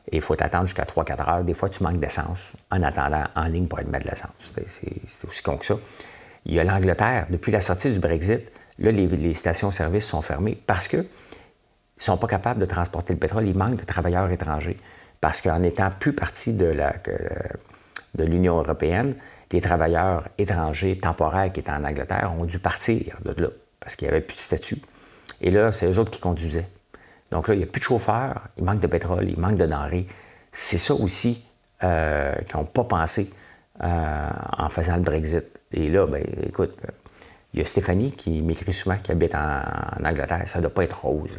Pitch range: 80-95 Hz